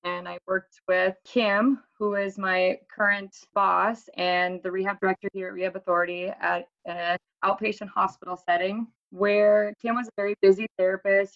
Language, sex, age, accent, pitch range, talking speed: English, female, 20-39, American, 180-205 Hz, 160 wpm